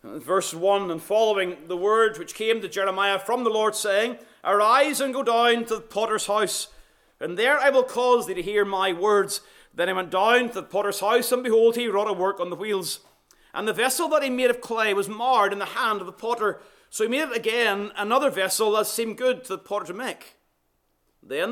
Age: 30-49